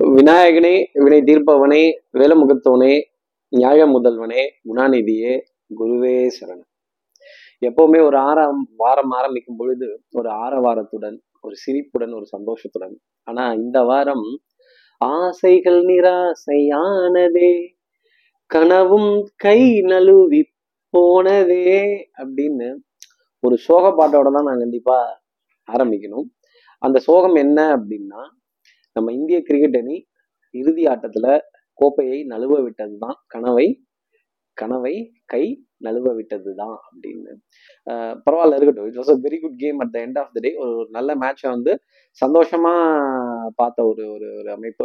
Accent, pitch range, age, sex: native, 125-185 Hz, 20-39, male